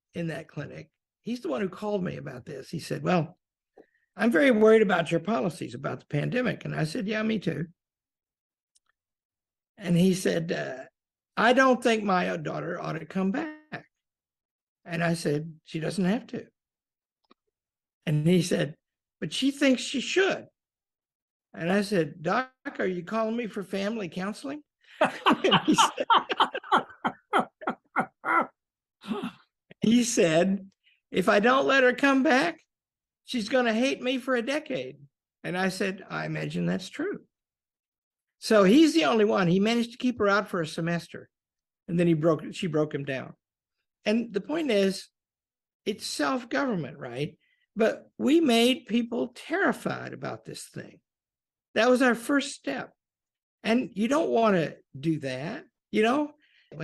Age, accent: 60-79, American